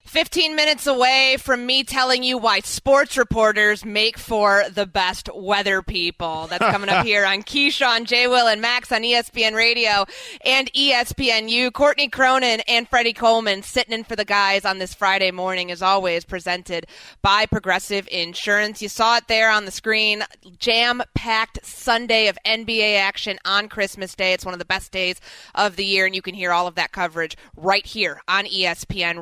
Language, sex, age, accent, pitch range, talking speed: English, female, 30-49, American, 190-235 Hz, 180 wpm